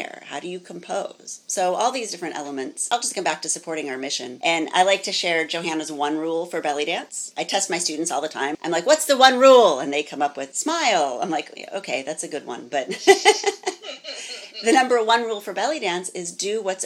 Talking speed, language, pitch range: 230 wpm, English, 155-240 Hz